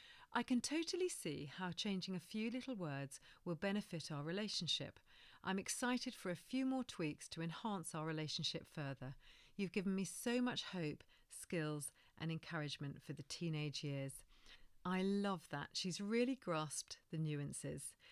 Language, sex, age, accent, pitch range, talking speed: English, female, 40-59, British, 155-220 Hz, 155 wpm